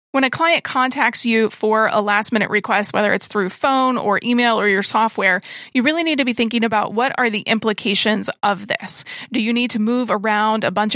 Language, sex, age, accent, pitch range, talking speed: English, female, 30-49, American, 205-250 Hz, 215 wpm